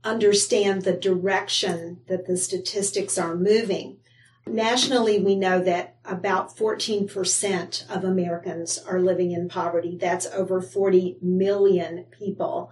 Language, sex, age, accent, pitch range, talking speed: English, female, 50-69, American, 180-215 Hz, 120 wpm